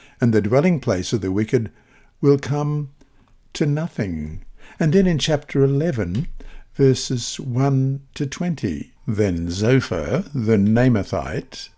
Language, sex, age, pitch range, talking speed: English, male, 60-79, 110-145 Hz, 120 wpm